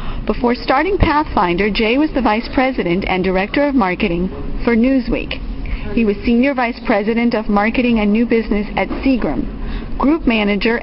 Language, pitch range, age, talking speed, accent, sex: English, 200-255 Hz, 50-69, 155 wpm, American, female